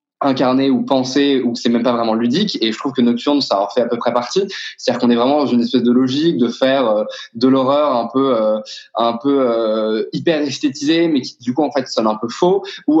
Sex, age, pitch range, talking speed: male, 20-39, 120-145 Hz, 265 wpm